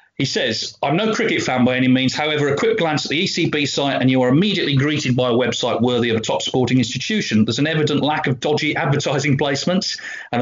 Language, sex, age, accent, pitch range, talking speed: English, male, 40-59, British, 115-145 Hz, 230 wpm